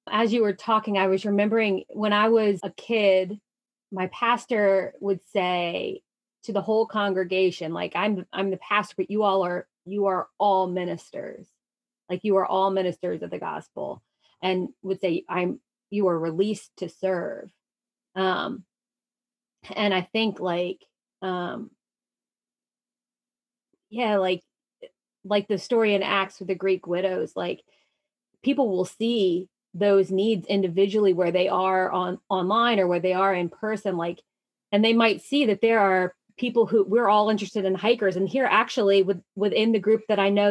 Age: 30-49